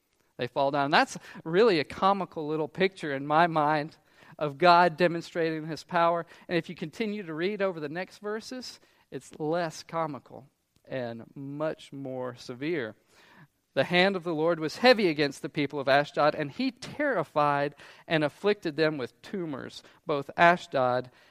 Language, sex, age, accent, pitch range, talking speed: English, male, 40-59, American, 140-175 Hz, 160 wpm